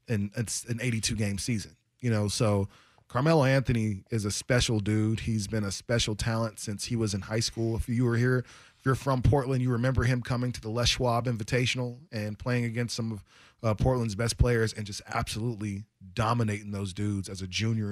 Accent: American